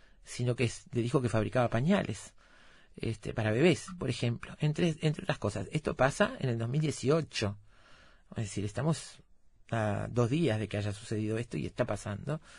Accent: Argentinian